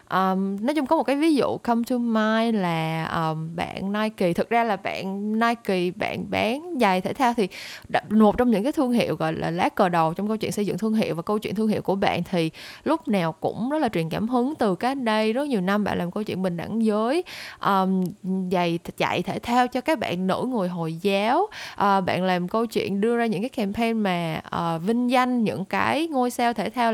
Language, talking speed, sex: Vietnamese, 235 wpm, female